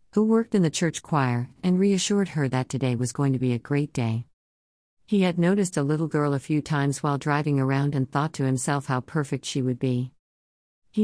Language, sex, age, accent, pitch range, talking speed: English, female, 50-69, American, 130-165 Hz, 215 wpm